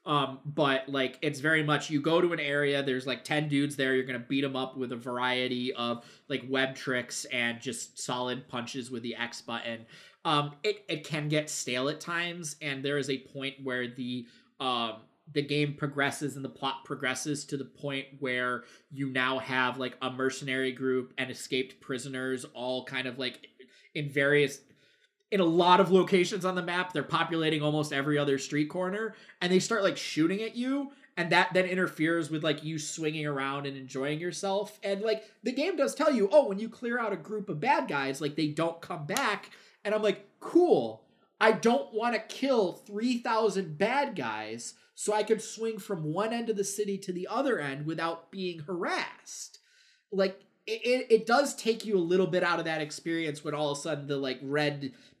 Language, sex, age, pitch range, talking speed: English, male, 20-39, 135-195 Hz, 200 wpm